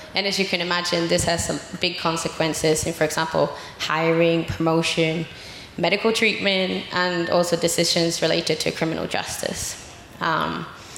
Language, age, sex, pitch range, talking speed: Danish, 20-39, female, 165-190 Hz, 135 wpm